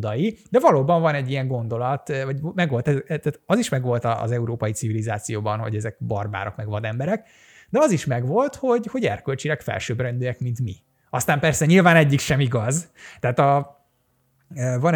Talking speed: 150 wpm